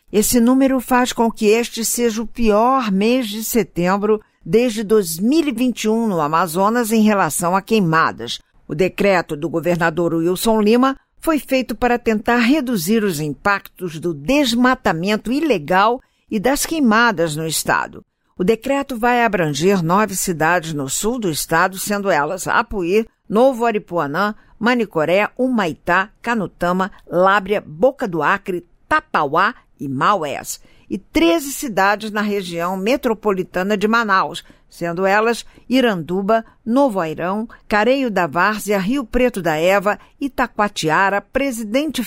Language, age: Portuguese, 50-69